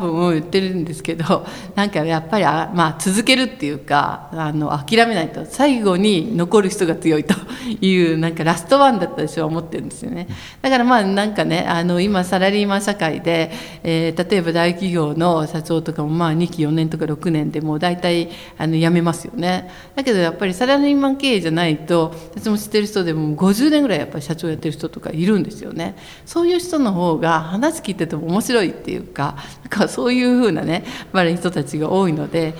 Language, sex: Japanese, female